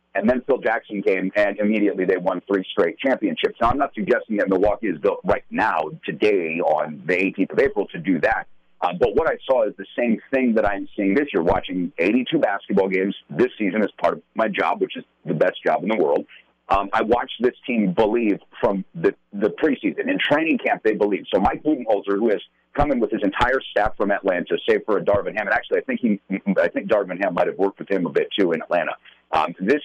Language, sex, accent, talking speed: English, male, American, 235 wpm